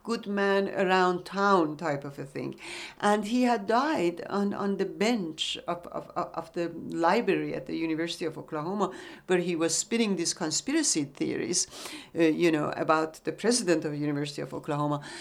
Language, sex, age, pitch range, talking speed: English, female, 60-79, 175-240 Hz, 175 wpm